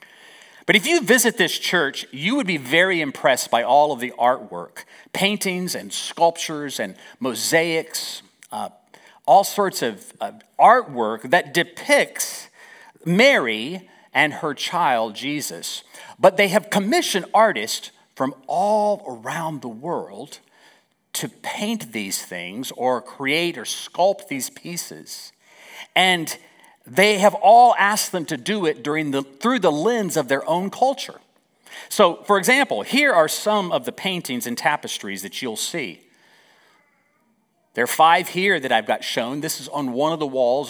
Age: 50-69